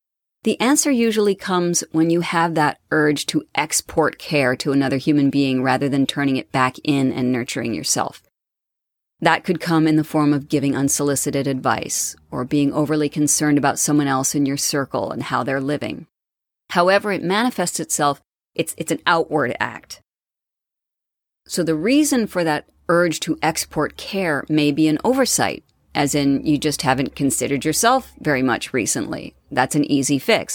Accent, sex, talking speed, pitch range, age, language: American, female, 165 wpm, 140-160 Hz, 30-49, English